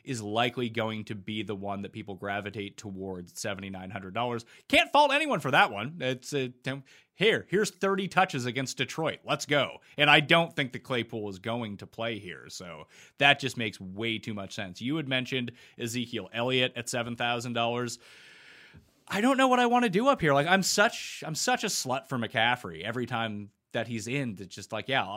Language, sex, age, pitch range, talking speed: English, male, 30-49, 110-155 Hz, 195 wpm